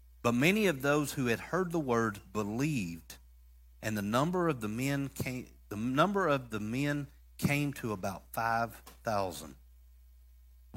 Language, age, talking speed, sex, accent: English, 40-59, 155 wpm, male, American